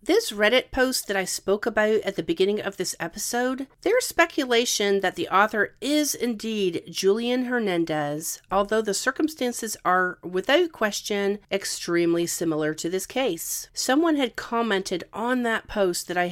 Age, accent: 40-59, American